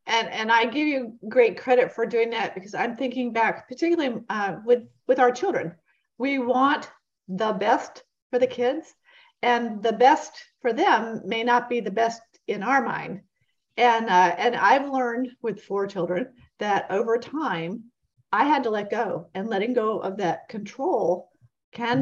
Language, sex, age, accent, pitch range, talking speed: English, female, 40-59, American, 175-250 Hz, 170 wpm